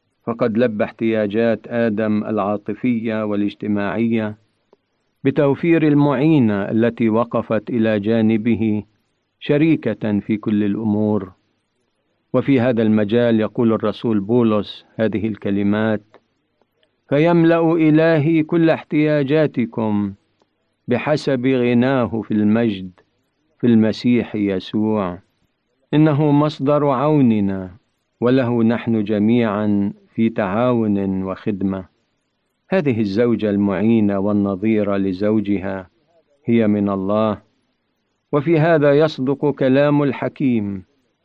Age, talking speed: 50-69, 85 wpm